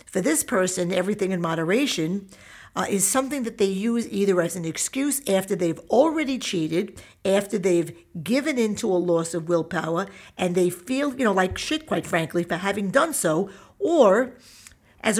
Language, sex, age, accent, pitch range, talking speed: English, female, 50-69, American, 170-205 Hz, 170 wpm